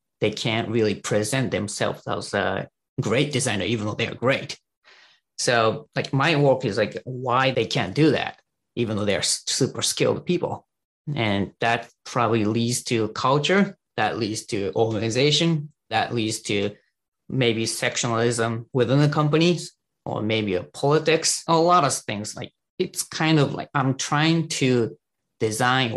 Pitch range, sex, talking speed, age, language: 110-145 Hz, male, 150 wpm, 30-49, English